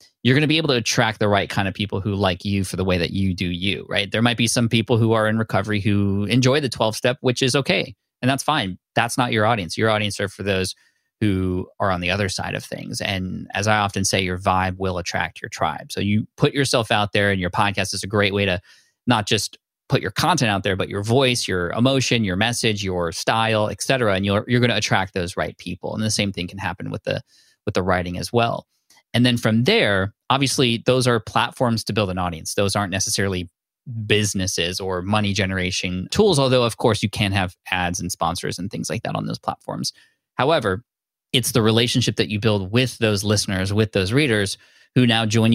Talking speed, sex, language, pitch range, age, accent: 230 wpm, male, English, 95-120 Hz, 20-39, American